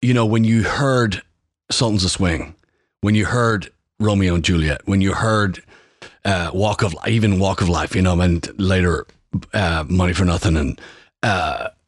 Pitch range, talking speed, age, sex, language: 90-115 Hz, 170 wpm, 40-59, male, English